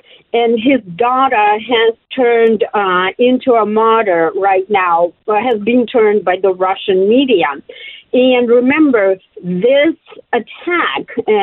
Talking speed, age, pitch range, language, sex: 115 wpm, 50-69, 200-265 Hz, English, female